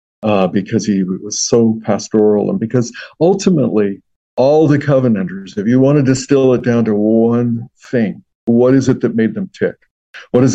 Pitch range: 110-130 Hz